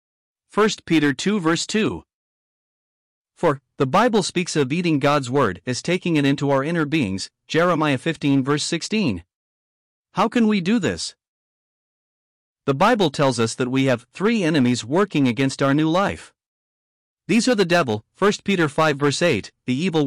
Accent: American